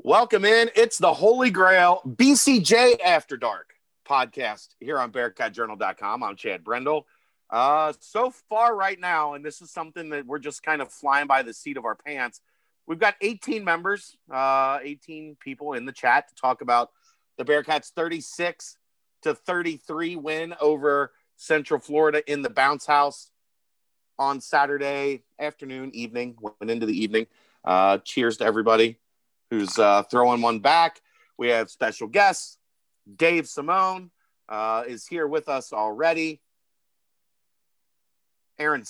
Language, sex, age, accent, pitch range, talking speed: English, male, 40-59, American, 125-170 Hz, 145 wpm